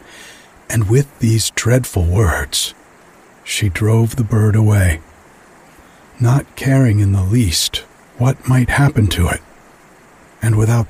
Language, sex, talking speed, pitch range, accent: English, male, 120 wpm, 90-130 Hz, American